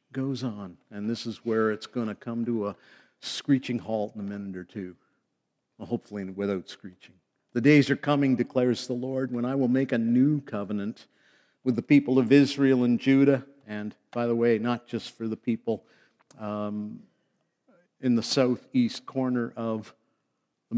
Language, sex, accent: English, male, American